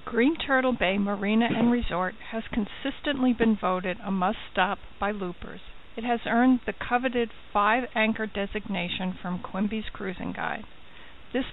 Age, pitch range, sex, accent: 50-69, 210-240 Hz, female, American